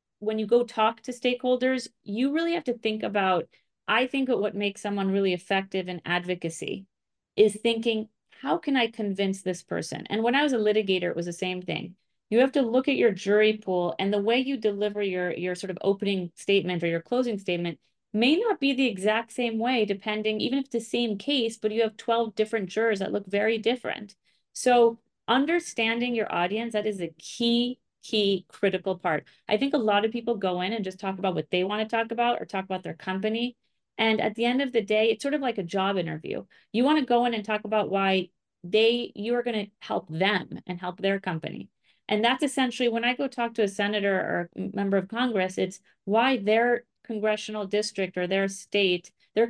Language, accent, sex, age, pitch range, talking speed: English, American, female, 30-49, 190-235 Hz, 215 wpm